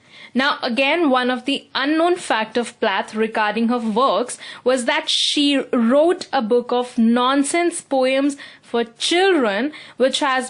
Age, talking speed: 20-39, 145 wpm